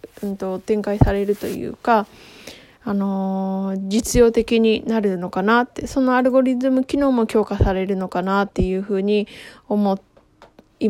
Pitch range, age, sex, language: 205-265 Hz, 20-39, female, Japanese